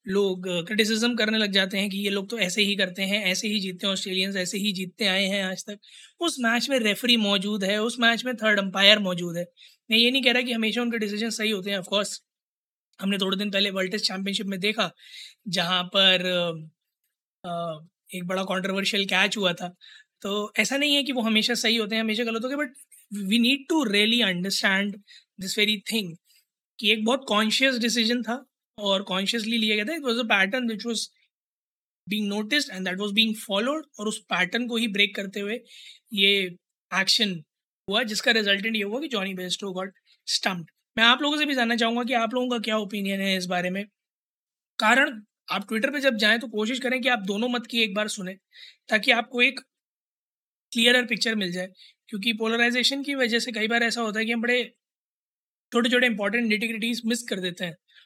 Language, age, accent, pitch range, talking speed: Hindi, 20-39, native, 195-235 Hz, 205 wpm